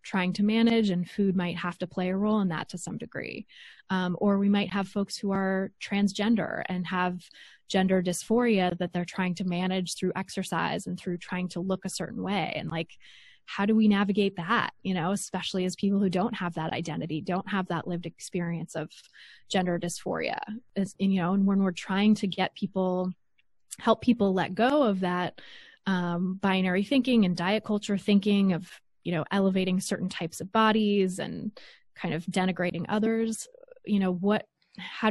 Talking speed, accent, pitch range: 185 wpm, American, 180-205 Hz